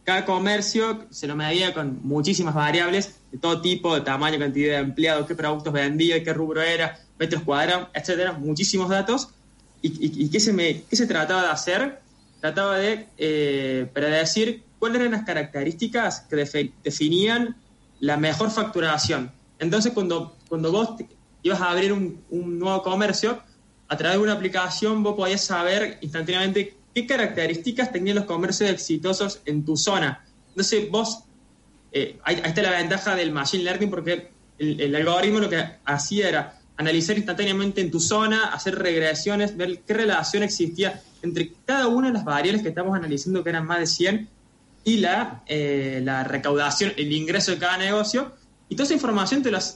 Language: Spanish